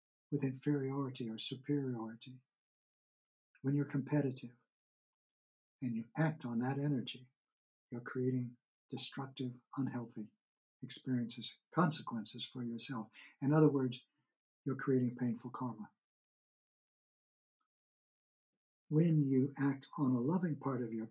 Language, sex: English, male